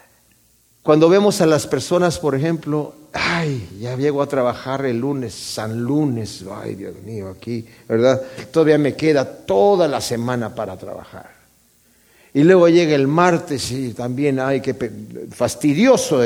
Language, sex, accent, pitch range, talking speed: Spanish, male, Mexican, 130-210 Hz, 145 wpm